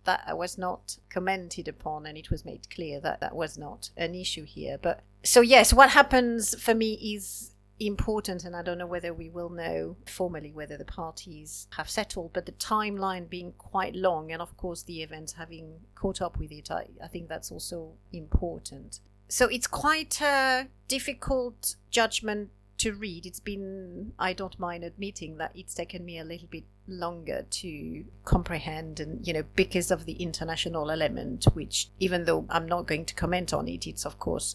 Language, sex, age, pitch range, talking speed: English, female, 40-59, 155-195 Hz, 185 wpm